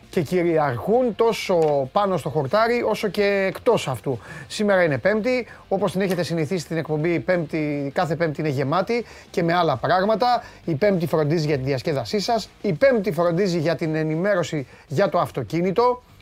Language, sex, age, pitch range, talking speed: Greek, male, 30-49, 155-220 Hz, 165 wpm